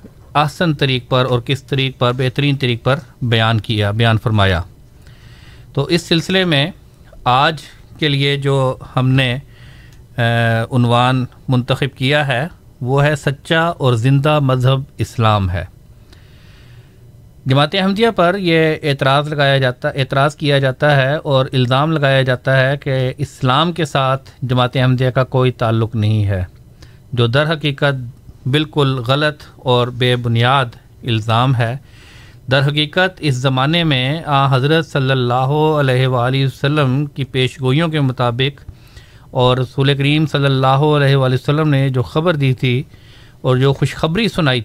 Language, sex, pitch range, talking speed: Urdu, male, 125-145 Hz, 145 wpm